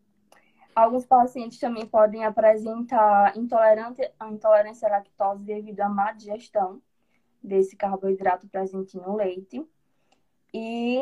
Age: 10-29